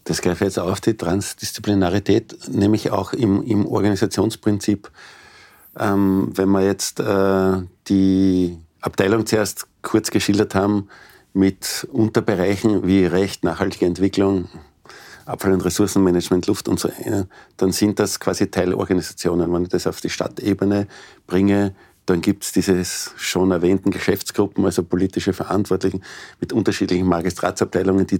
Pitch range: 90-105 Hz